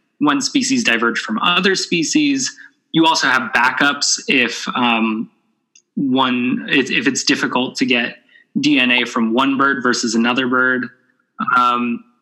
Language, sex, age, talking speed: English, male, 20-39, 135 wpm